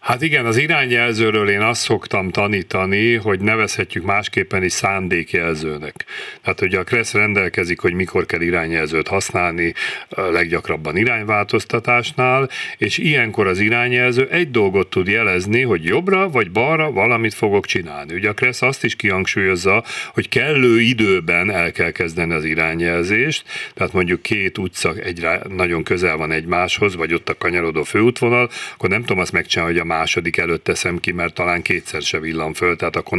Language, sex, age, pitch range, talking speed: Hungarian, male, 40-59, 90-125 Hz, 155 wpm